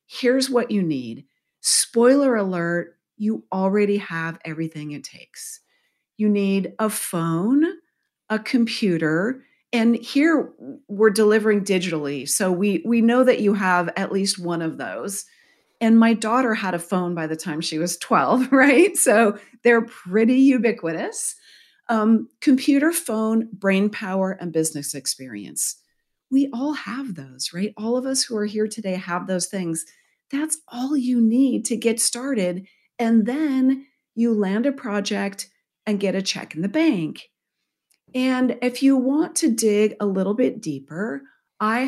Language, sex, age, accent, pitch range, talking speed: English, female, 40-59, American, 180-245 Hz, 150 wpm